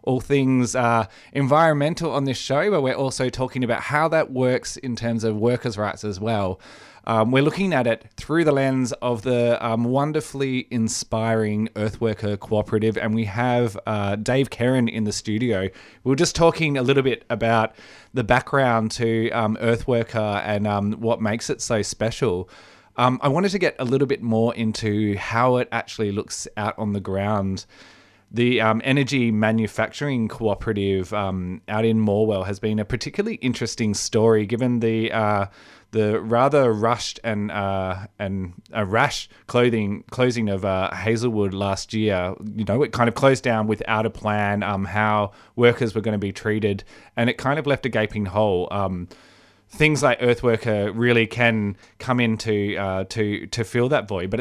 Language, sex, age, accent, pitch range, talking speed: English, male, 20-39, Australian, 105-125 Hz, 175 wpm